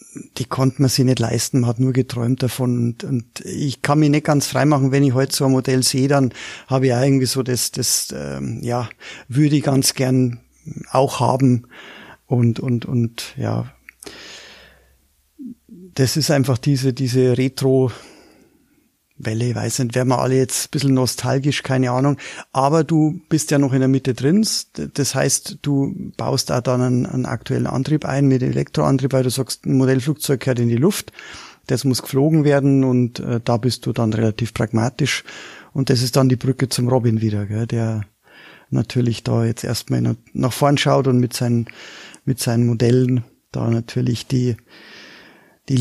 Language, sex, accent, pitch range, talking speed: German, male, German, 120-135 Hz, 180 wpm